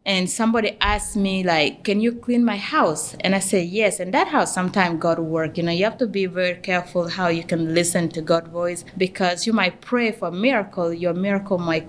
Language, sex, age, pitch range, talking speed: English, female, 20-39, 170-220 Hz, 225 wpm